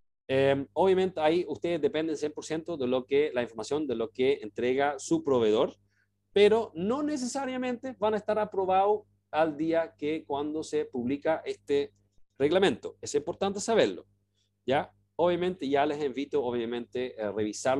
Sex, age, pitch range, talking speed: male, 40-59, 115-160 Hz, 145 wpm